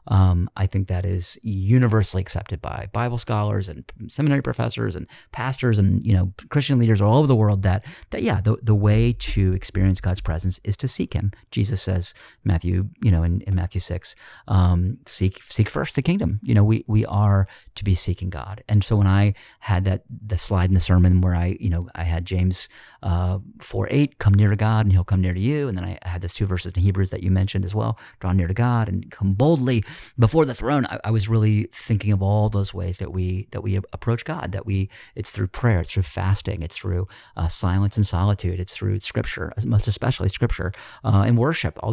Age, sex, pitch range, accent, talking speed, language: 40-59, male, 90-110 Hz, American, 225 wpm, English